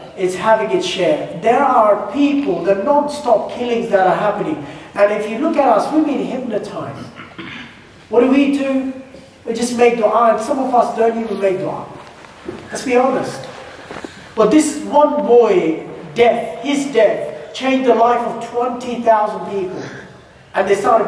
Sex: male